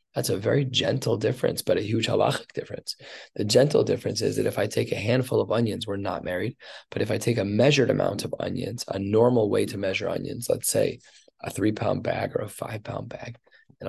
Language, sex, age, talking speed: English, male, 20-39, 215 wpm